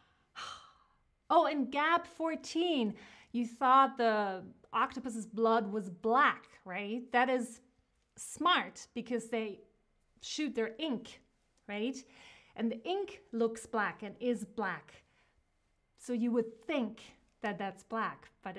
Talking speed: 120 wpm